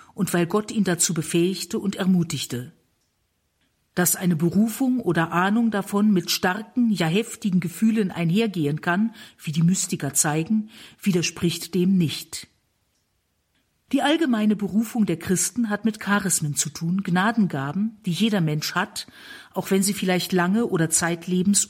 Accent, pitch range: German, 175-215 Hz